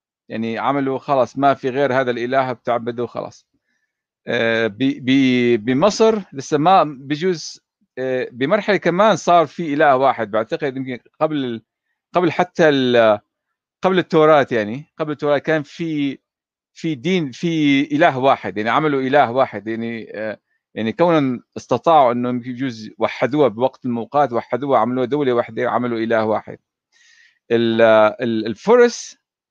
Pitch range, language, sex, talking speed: 115-155 Hz, Arabic, male, 125 wpm